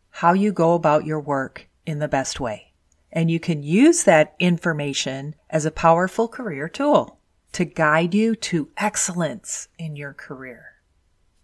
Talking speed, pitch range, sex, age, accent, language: 150 wpm, 145-200 Hz, female, 40-59, American, English